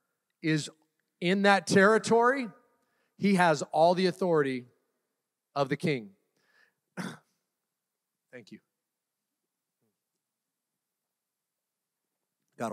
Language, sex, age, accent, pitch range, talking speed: English, male, 40-59, American, 155-195 Hz, 70 wpm